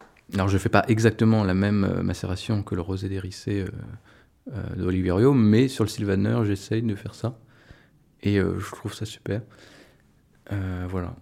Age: 20-39